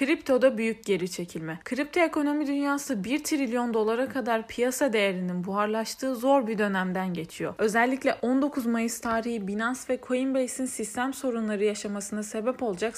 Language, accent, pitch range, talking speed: Turkish, native, 215-265 Hz, 140 wpm